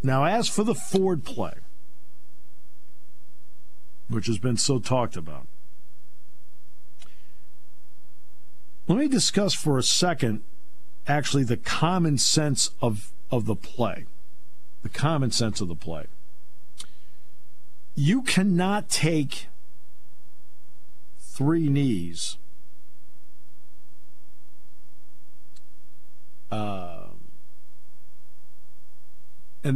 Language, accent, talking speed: English, American, 80 wpm